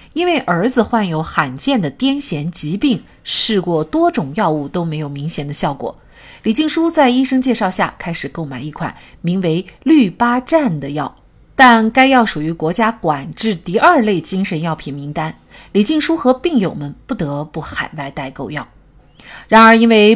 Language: Chinese